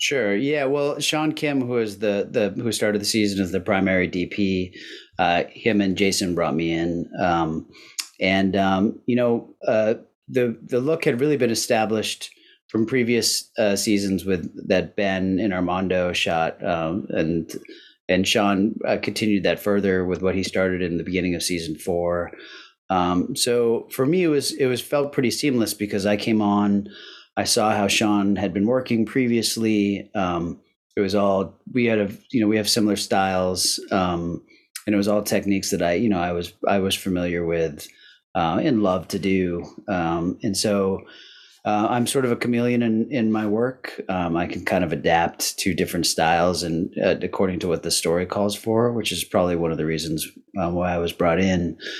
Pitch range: 90-110 Hz